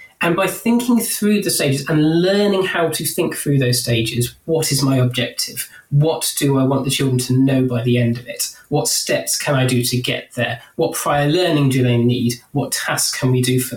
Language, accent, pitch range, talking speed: English, British, 130-170 Hz, 220 wpm